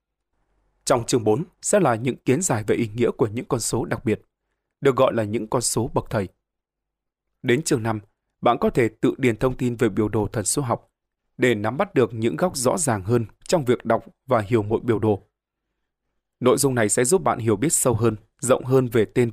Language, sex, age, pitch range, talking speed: Vietnamese, male, 20-39, 110-135 Hz, 225 wpm